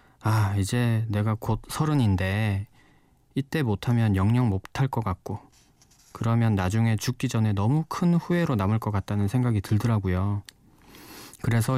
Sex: male